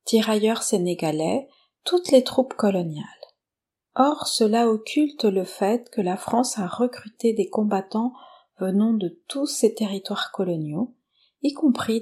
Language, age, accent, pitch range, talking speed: French, 40-59, French, 190-250 Hz, 130 wpm